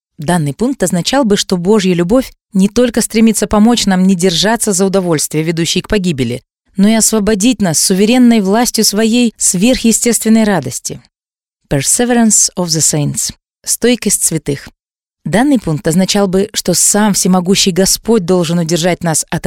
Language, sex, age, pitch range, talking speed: Russian, female, 20-39, 170-225 Hz, 140 wpm